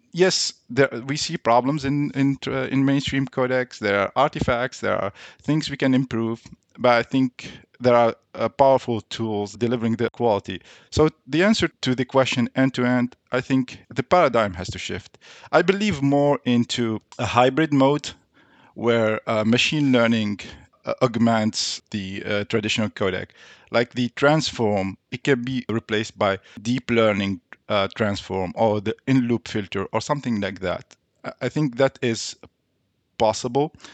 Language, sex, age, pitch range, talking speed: English, male, 50-69, 110-135 Hz, 155 wpm